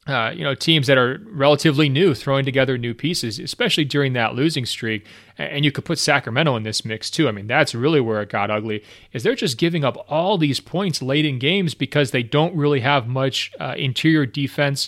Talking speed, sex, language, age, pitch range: 220 wpm, male, English, 30-49, 120-145 Hz